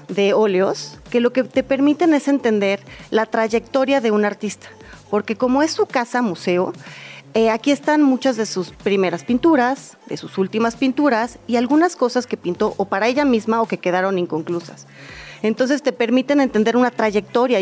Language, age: Spanish, 30-49